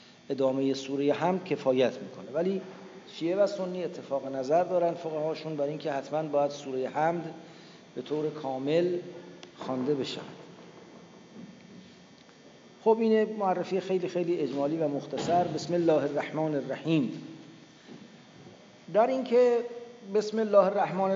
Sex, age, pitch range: male, 50-69, 140-175 Hz